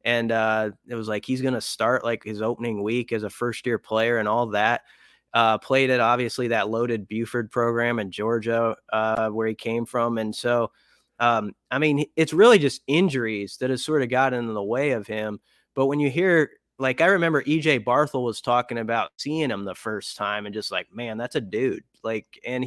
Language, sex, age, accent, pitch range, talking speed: English, male, 20-39, American, 110-130 Hz, 210 wpm